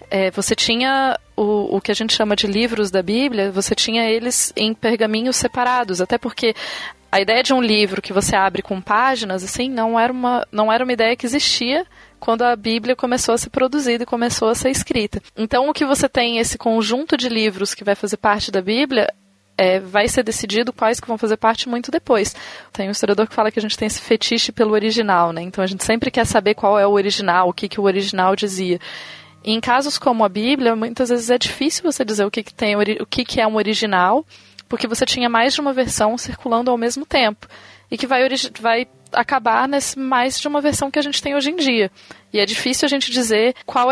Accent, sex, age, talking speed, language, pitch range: Brazilian, female, 20-39, 225 wpm, Portuguese, 210-250 Hz